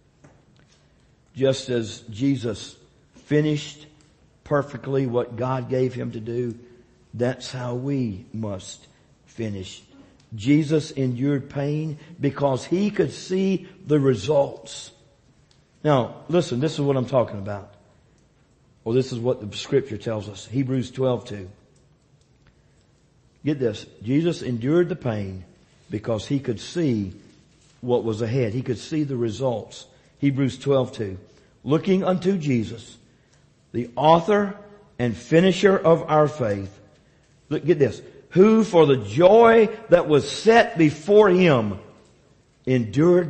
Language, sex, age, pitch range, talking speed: English, male, 50-69, 115-150 Hz, 120 wpm